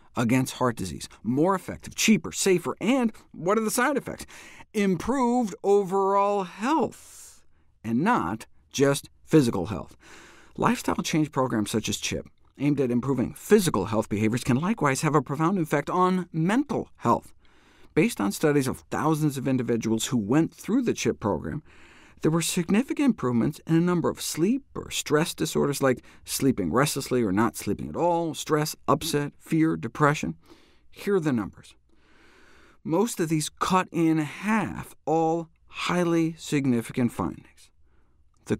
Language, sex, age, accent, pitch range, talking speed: English, male, 50-69, American, 120-175 Hz, 145 wpm